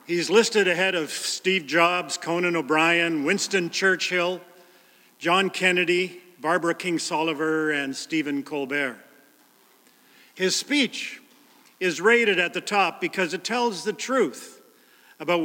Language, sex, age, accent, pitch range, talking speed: English, male, 50-69, American, 160-200 Hz, 120 wpm